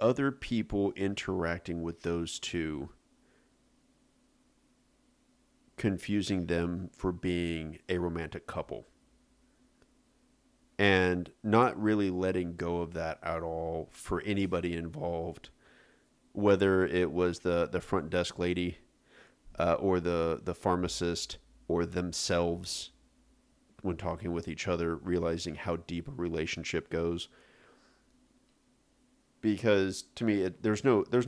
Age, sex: 40-59, male